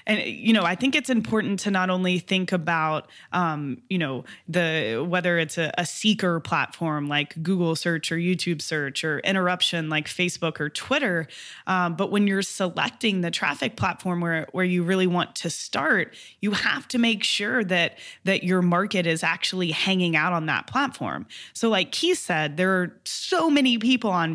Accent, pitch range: American, 170-215 Hz